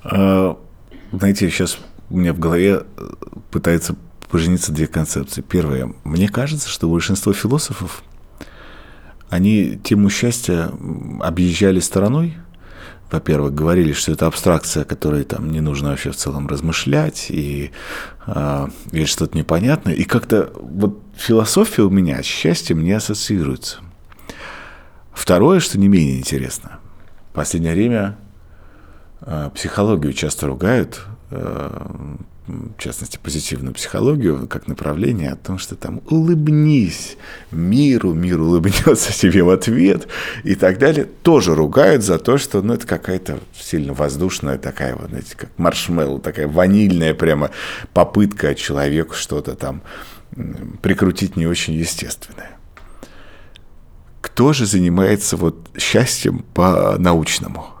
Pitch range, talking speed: 80-100 Hz, 115 wpm